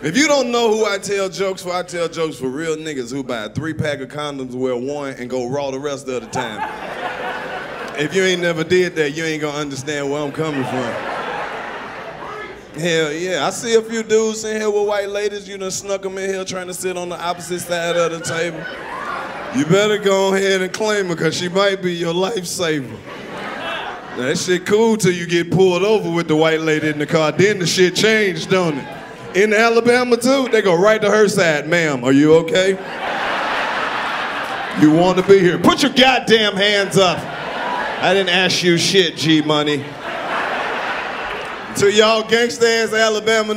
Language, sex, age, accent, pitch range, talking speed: English, male, 30-49, American, 155-205 Hz, 195 wpm